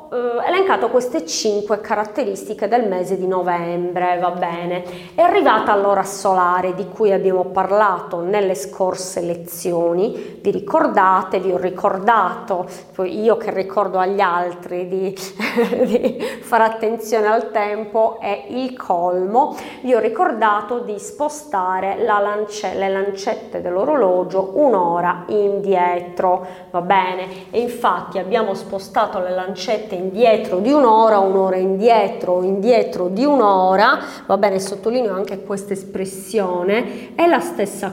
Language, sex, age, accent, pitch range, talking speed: Italian, female, 30-49, native, 185-220 Hz, 120 wpm